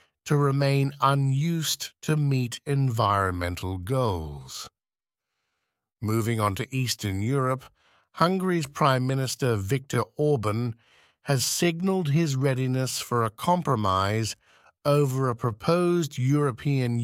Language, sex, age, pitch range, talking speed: English, male, 50-69, 115-145 Hz, 100 wpm